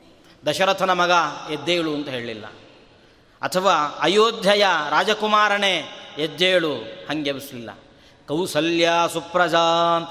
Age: 30-49